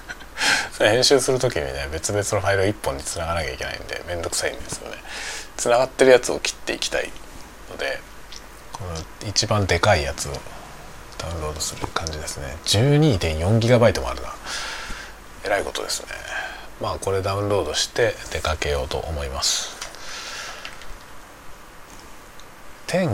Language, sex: Japanese, male